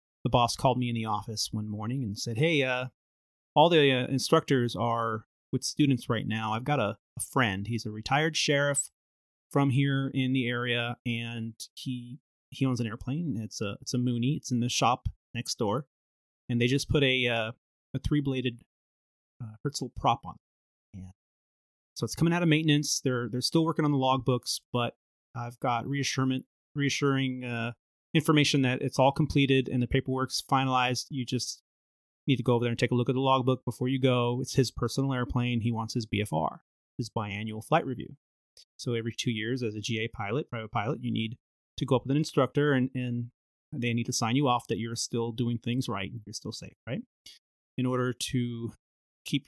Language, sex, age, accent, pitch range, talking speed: English, male, 30-49, American, 115-135 Hz, 200 wpm